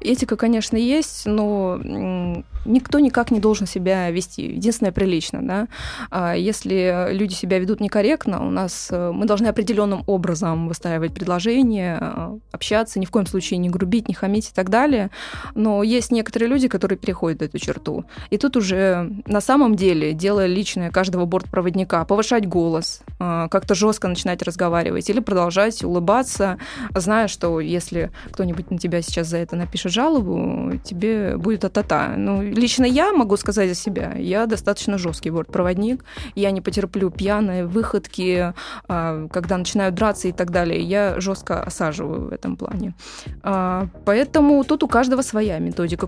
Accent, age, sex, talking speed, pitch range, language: native, 20-39, female, 145 wpm, 185-225 Hz, Russian